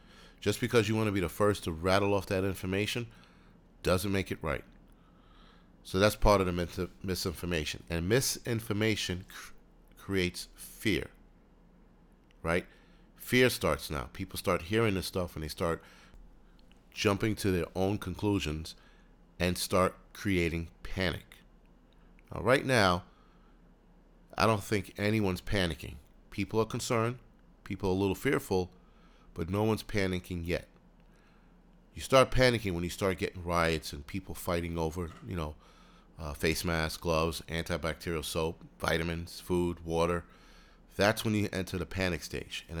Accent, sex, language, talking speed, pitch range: American, male, English, 140 wpm, 85-100 Hz